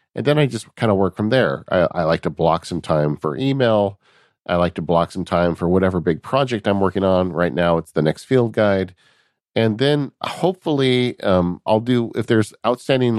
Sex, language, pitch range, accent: male, English, 85-115 Hz, American